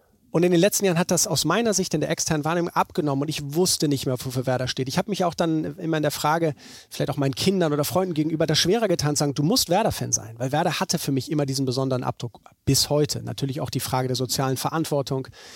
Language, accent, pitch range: German, German, 135-170 Hz